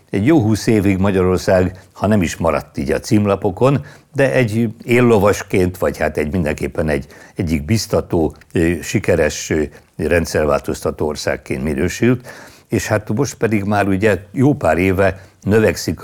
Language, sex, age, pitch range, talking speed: Hungarian, male, 60-79, 80-110 Hz, 135 wpm